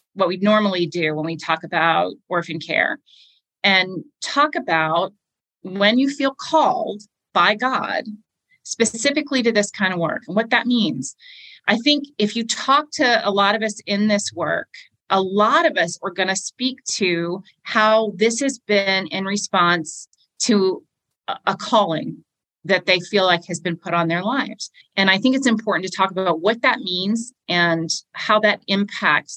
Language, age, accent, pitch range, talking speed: English, 30-49, American, 180-230 Hz, 175 wpm